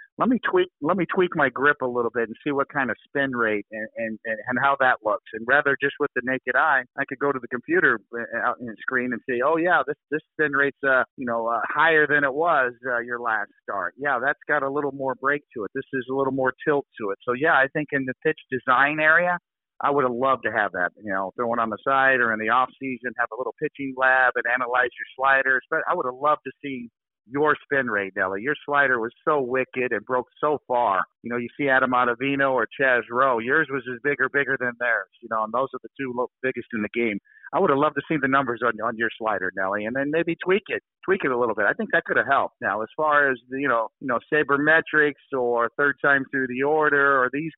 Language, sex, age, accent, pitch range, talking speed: English, male, 50-69, American, 120-140 Hz, 260 wpm